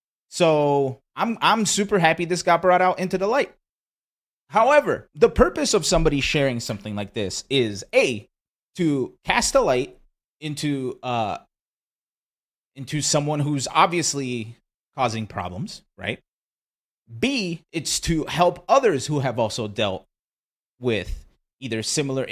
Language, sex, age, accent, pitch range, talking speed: English, male, 30-49, American, 130-190 Hz, 130 wpm